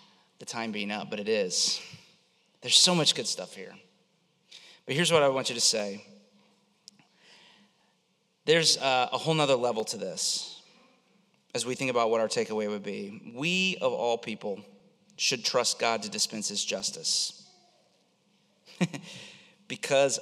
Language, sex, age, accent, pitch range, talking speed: English, male, 30-49, American, 110-145 Hz, 150 wpm